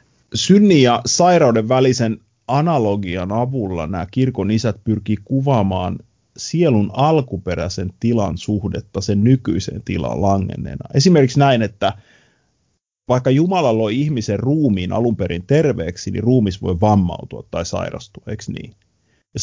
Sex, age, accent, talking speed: male, 30-49, native, 115 wpm